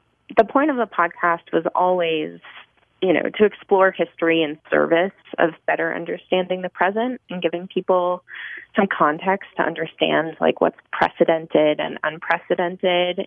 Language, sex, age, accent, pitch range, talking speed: English, female, 20-39, American, 160-190 Hz, 140 wpm